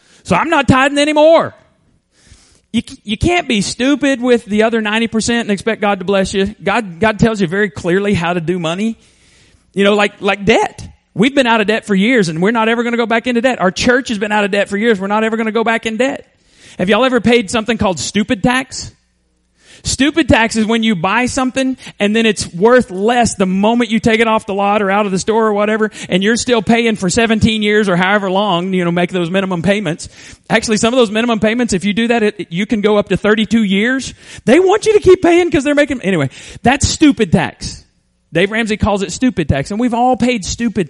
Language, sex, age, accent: English, male, 40-59, American